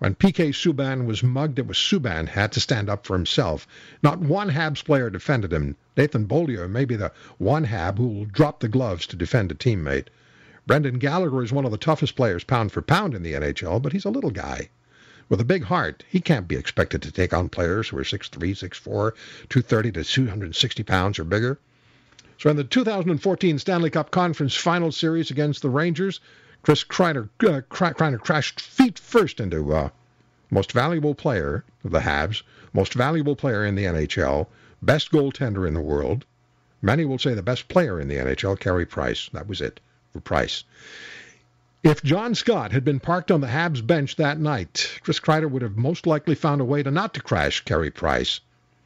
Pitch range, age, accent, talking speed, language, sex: 95-155 Hz, 60-79, American, 195 wpm, English, male